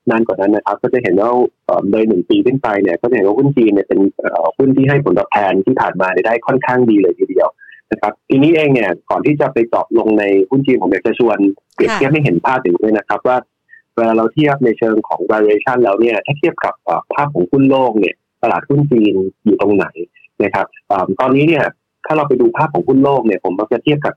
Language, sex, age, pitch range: Thai, male, 20-39, 105-145 Hz